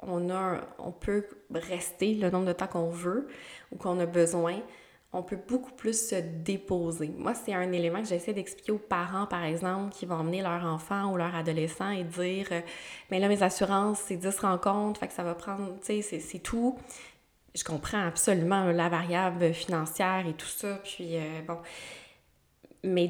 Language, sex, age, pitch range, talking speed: French, female, 20-39, 170-190 Hz, 190 wpm